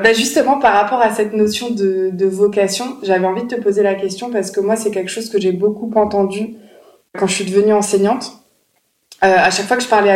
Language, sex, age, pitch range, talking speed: French, female, 20-39, 190-220 Hz, 230 wpm